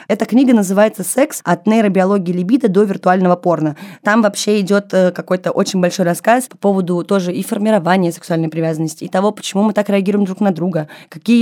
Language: Russian